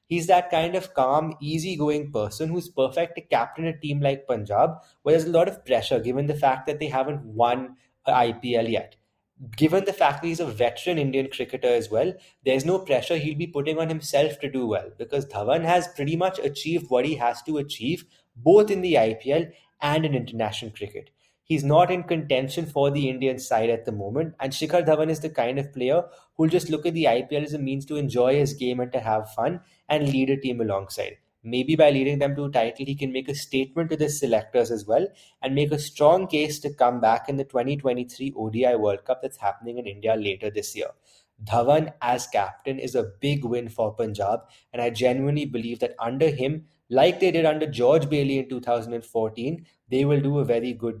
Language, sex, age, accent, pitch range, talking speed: English, male, 20-39, Indian, 125-155 Hz, 215 wpm